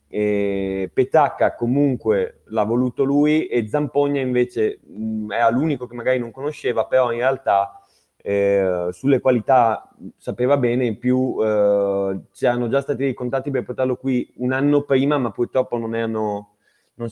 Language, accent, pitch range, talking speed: Italian, native, 105-130 Hz, 160 wpm